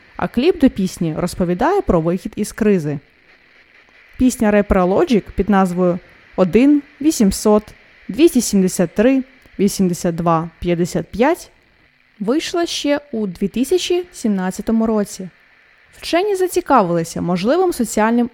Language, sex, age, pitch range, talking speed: Ukrainian, female, 20-39, 190-280 Hz, 85 wpm